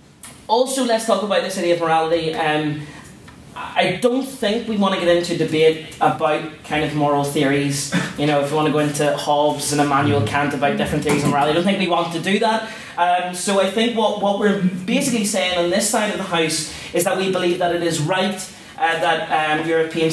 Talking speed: 225 wpm